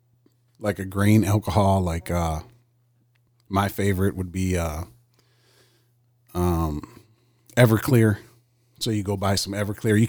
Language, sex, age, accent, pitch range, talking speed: English, male, 40-59, American, 100-120 Hz, 120 wpm